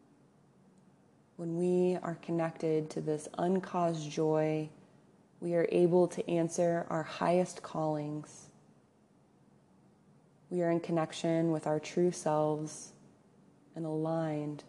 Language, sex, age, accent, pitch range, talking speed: English, female, 20-39, American, 155-180 Hz, 105 wpm